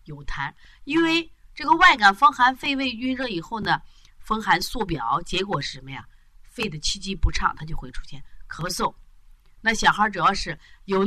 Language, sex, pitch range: Chinese, female, 135-215 Hz